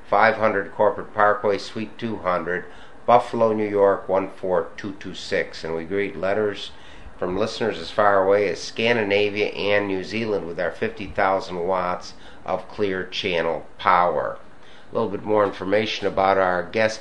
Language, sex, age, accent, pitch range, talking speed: English, male, 60-79, American, 95-110 Hz, 140 wpm